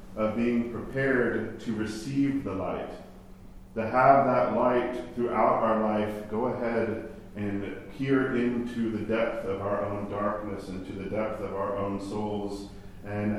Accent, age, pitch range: American, 40-59, 100-115 Hz